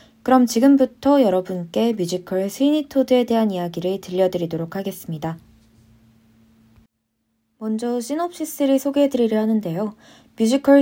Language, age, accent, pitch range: Korean, 20-39, native, 185-260 Hz